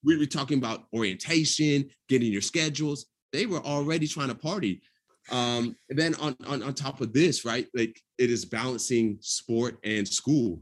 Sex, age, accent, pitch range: male, 30-49, American, 115-140 Hz